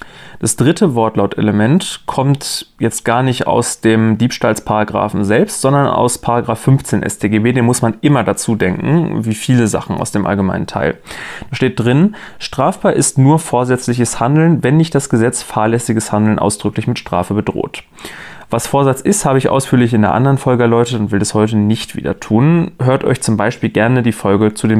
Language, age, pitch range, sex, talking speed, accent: German, 30-49, 110-140 Hz, male, 180 wpm, German